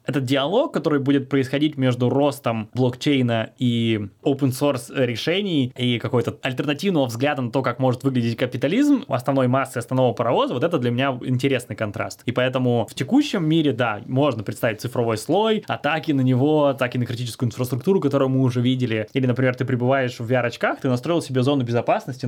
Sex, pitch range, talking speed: male, 120-140 Hz, 175 wpm